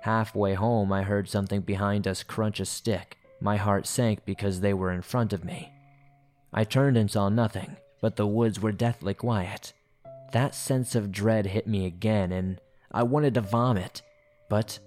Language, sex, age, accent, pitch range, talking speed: English, male, 20-39, American, 105-125 Hz, 180 wpm